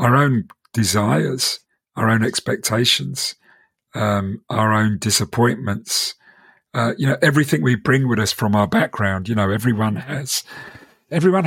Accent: British